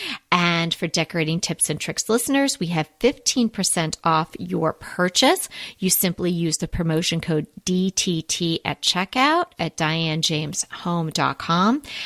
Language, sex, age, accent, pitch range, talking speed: English, female, 40-59, American, 160-220 Hz, 120 wpm